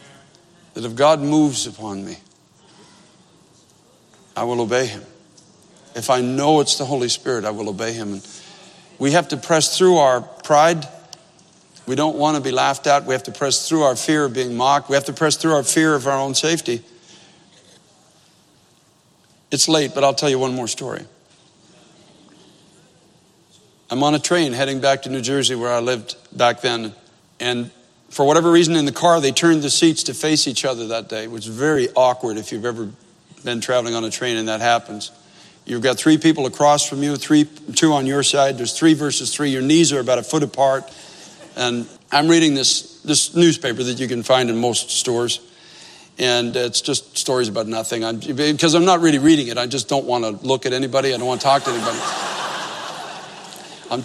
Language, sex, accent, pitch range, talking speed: English, male, American, 120-155 Hz, 195 wpm